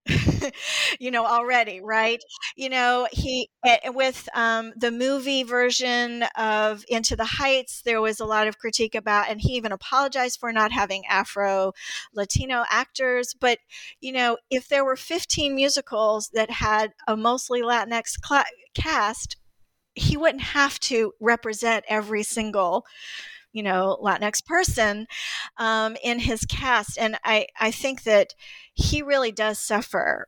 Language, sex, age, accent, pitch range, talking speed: English, female, 40-59, American, 200-245 Hz, 145 wpm